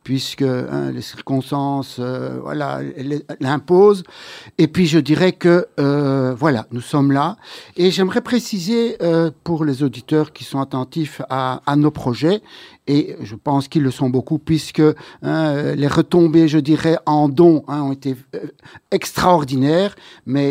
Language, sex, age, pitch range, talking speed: French, male, 60-79, 145-185 Hz, 145 wpm